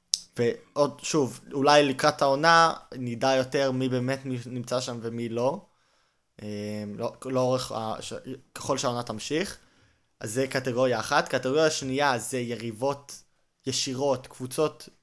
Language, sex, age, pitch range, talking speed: Hebrew, male, 20-39, 115-140 Hz, 130 wpm